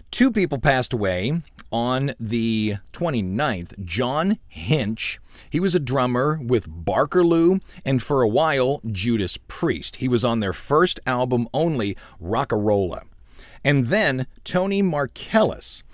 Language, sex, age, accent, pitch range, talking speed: English, male, 50-69, American, 110-160 Hz, 125 wpm